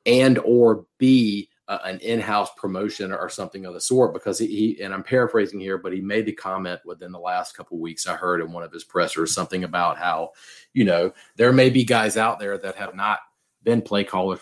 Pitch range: 90-110 Hz